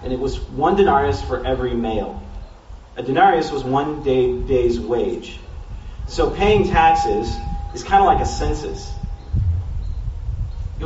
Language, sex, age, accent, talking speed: English, male, 30-49, American, 135 wpm